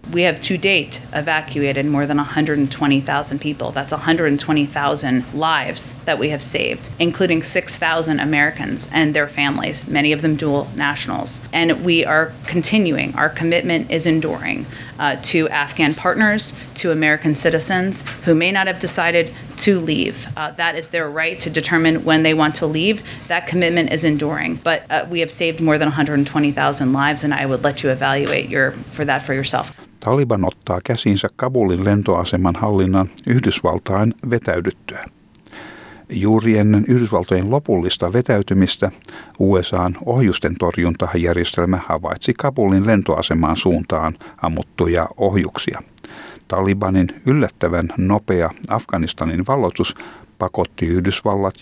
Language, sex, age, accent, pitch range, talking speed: Finnish, female, 30-49, American, 105-160 Hz, 130 wpm